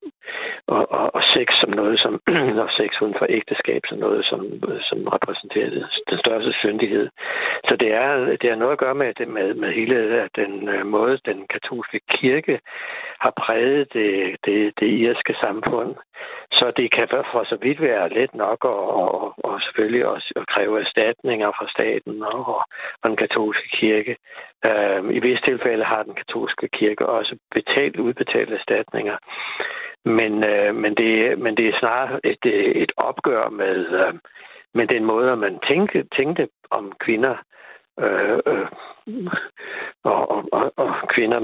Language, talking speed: Danish, 160 wpm